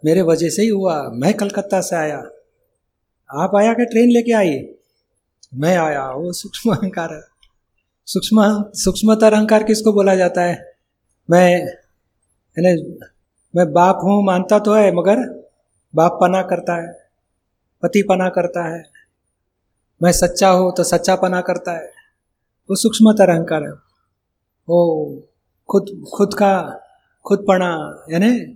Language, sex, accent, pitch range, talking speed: Hindi, male, native, 170-205 Hz, 125 wpm